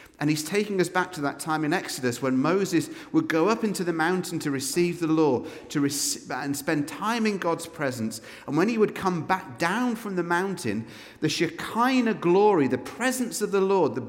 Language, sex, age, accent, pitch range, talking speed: English, male, 40-59, British, 145-235 Hz, 210 wpm